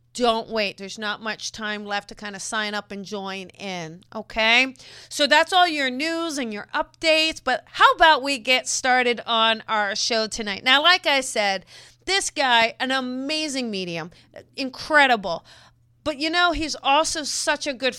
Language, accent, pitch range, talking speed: English, American, 210-270 Hz, 175 wpm